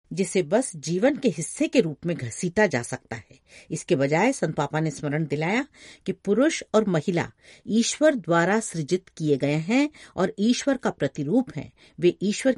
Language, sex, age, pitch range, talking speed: Hindi, female, 50-69, 155-225 Hz, 170 wpm